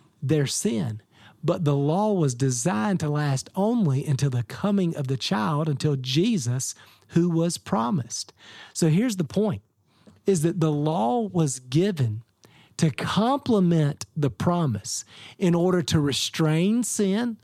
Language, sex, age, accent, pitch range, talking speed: English, male, 40-59, American, 140-195 Hz, 140 wpm